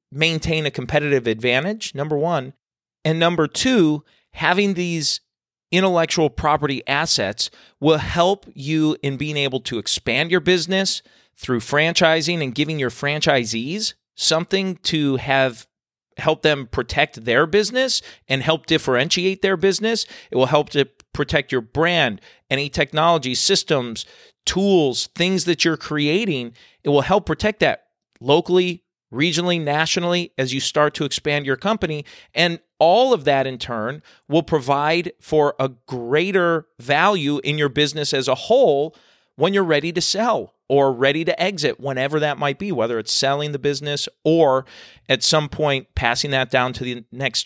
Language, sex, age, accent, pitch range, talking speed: English, male, 40-59, American, 135-170 Hz, 150 wpm